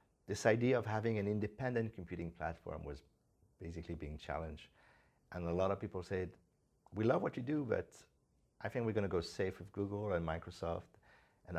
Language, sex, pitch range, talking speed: Romanian, male, 80-100 Hz, 185 wpm